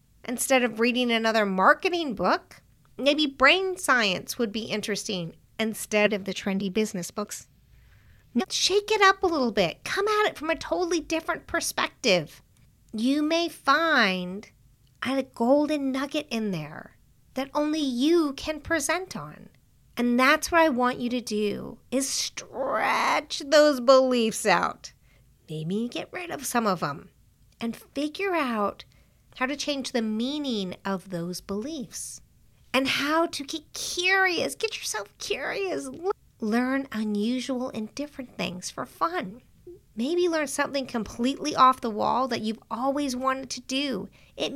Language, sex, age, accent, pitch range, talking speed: English, female, 40-59, American, 210-290 Hz, 145 wpm